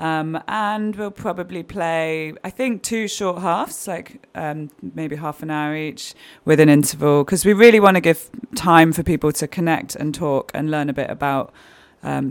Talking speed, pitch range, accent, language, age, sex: 195 wpm, 130-155 Hz, British, English, 20-39, female